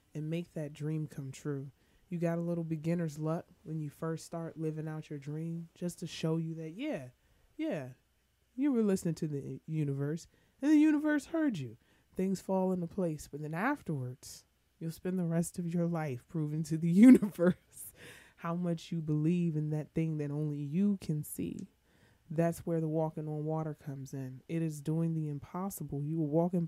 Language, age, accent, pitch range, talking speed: English, 20-39, American, 150-180 Hz, 190 wpm